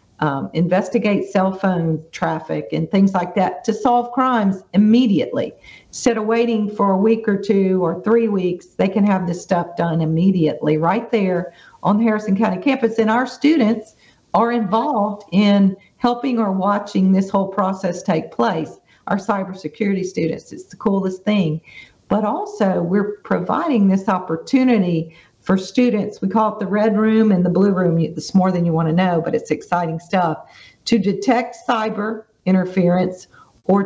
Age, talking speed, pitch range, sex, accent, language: 50-69, 165 wpm, 180-225 Hz, female, American, English